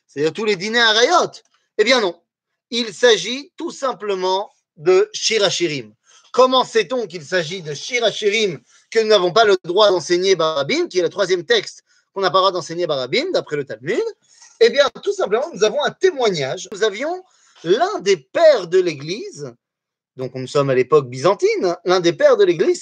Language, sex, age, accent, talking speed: French, male, 30-49, French, 185 wpm